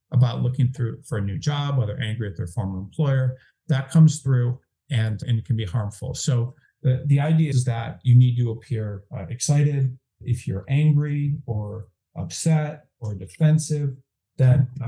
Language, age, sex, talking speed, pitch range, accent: English, 50-69, male, 170 wpm, 115-140 Hz, American